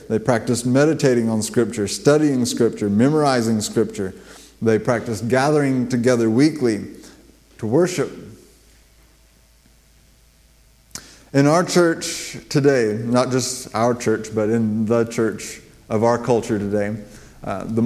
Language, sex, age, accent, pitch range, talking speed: English, male, 30-49, American, 110-130 Hz, 115 wpm